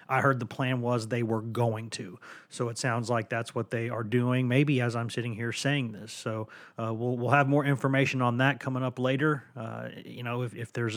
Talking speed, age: 235 wpm, 30-49